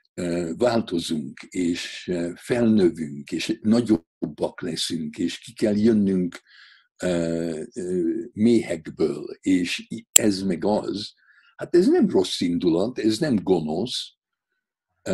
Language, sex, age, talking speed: Hungarian, male, 60-79, 90 wpm